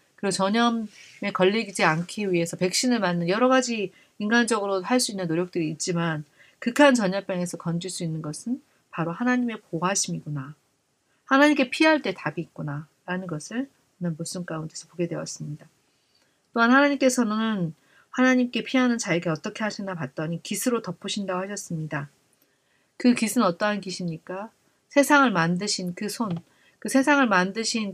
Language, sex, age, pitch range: Korean, female, 40-59, 165-230 Hz